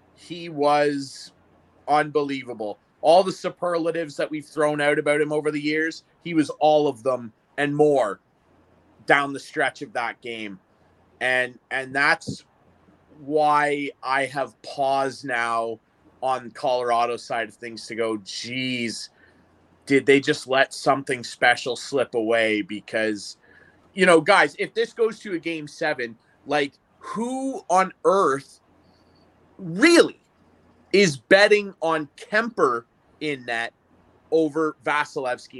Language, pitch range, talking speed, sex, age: English, 115-170 Hz, 130 wpm, male, 30-49